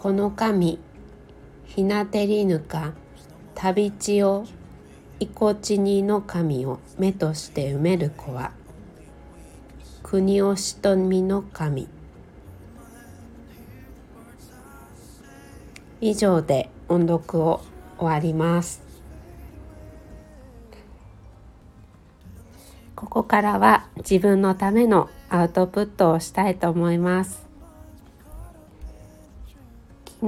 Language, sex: Japanese, female